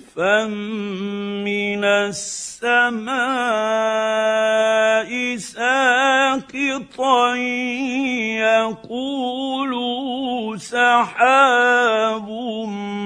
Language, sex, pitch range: Arabic, male, 215-245 Hz